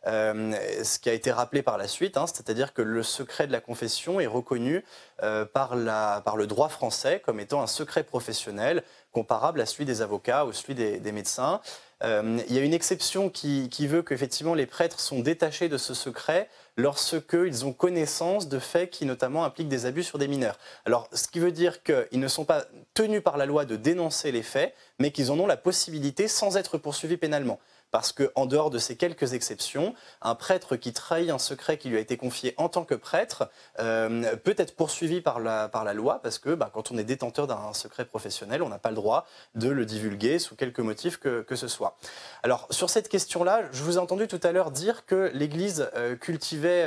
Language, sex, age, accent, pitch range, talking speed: French, male, 20-39, French, 125-175 Hz, 215 wpm